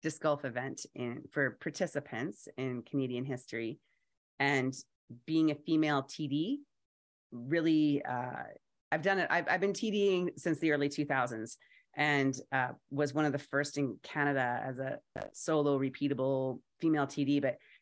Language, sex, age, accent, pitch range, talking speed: English, female, 30-49, American, 135-160 Hz, 150 wpm